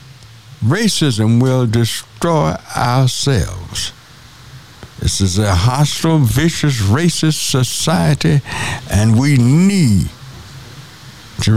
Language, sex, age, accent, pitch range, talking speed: English, male, 60-79, American, 105-135 Hz, 80 wpm